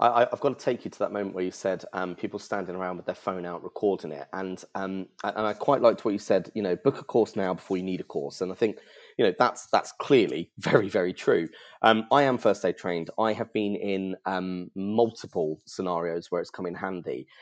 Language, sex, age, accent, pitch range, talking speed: English, male, 20-39, British, 95-115 Hz, 240 wpm